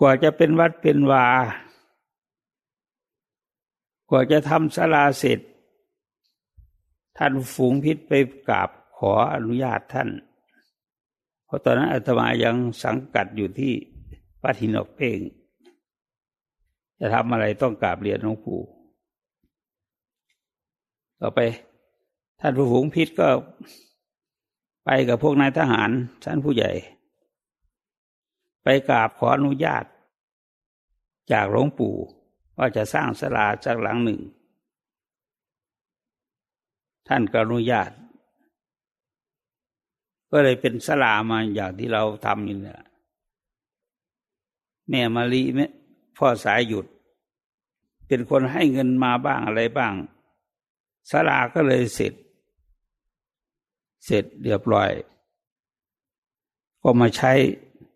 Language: English